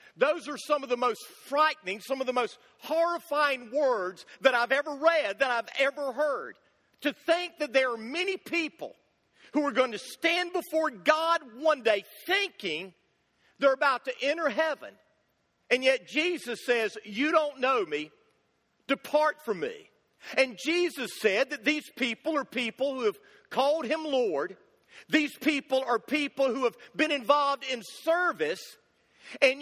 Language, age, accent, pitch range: English, 50-69, American, 235-310 Hz